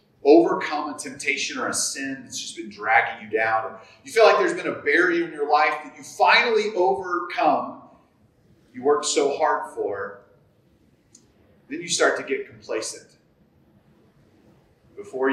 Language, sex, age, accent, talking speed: English, male, 30-49, American, 155 wpm